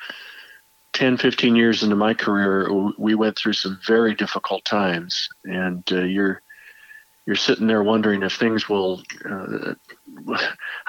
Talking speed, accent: 130 wpm, American